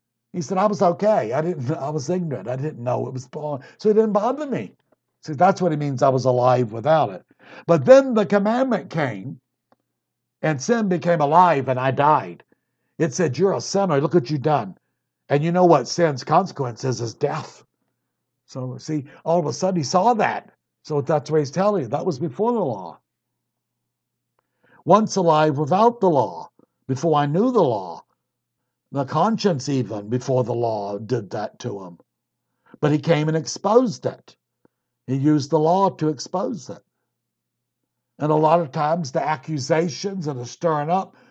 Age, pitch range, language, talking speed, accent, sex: 60-79, 130-180 Hz, English, 180 wpm, American, male